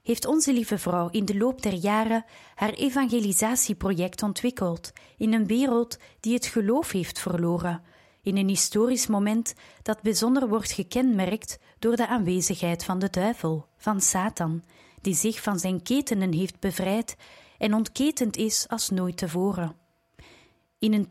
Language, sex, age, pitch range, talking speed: Dutch, female, 30-49, 180-230 Hz, 145 wpm